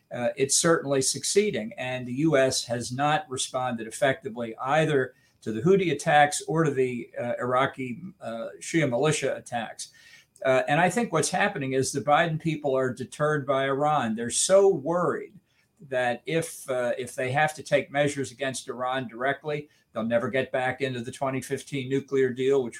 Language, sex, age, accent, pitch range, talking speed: English, male, 50-69, American, 125-160 Hz, 170 wpm